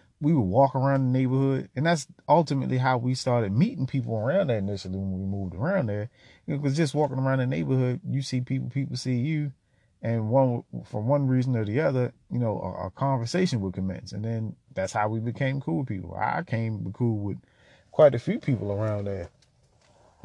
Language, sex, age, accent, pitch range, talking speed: English, male, 30-49, American, 100-135 Hz, 205 wpm